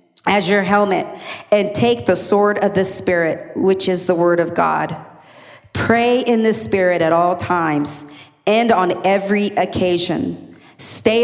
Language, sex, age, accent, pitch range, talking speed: English, female, 40-59, American, 175-210 Hz, 150 wpm